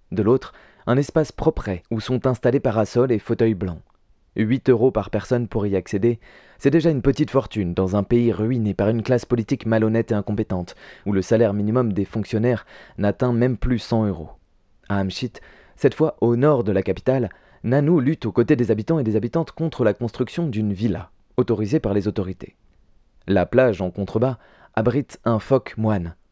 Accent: French